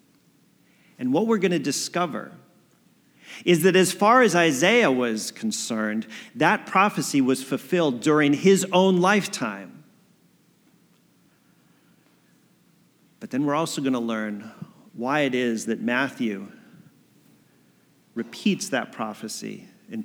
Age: 40-59